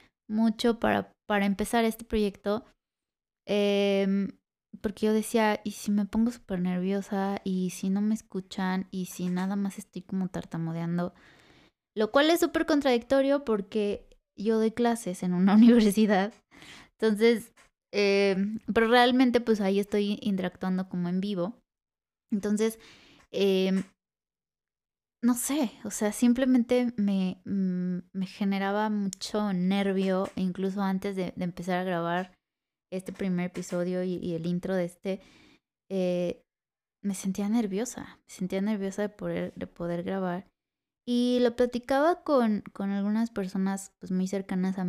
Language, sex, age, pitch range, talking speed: Spanish, female, 20-39, 185-225 Hz, 135 wpm